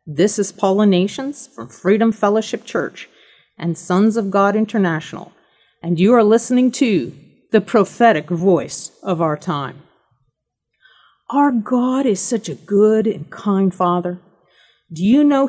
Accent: American